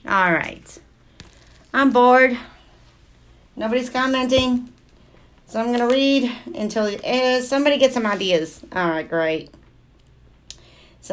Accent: American